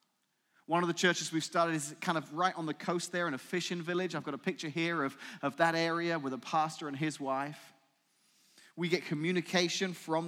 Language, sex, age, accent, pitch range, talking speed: English, male, 30-49, British, 130-165 Hz, 215 wpm